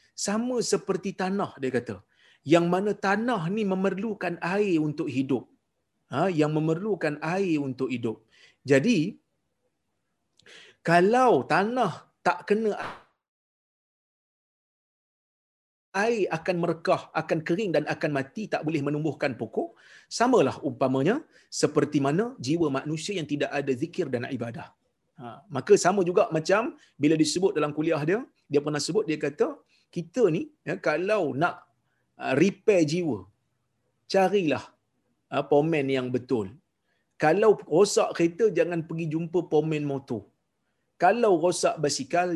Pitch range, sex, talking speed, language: 145-190 Hz, male, 120 wpm, Malayalam